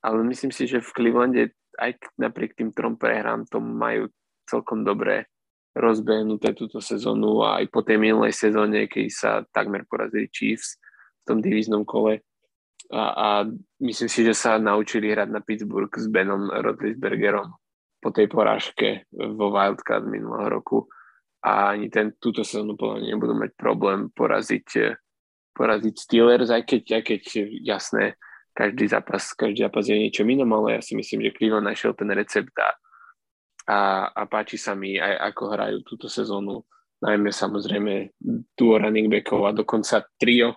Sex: male